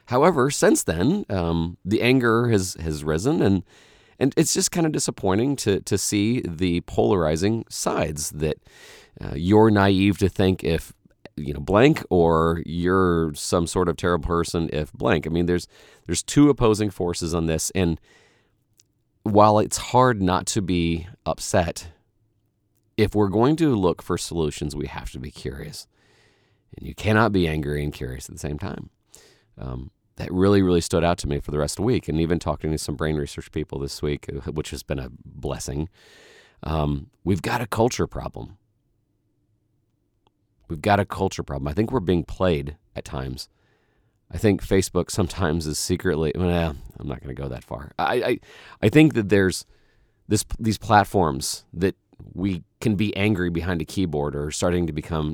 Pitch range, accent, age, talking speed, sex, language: 80-110 Hz, American, 30-49, 175 wpm, male, English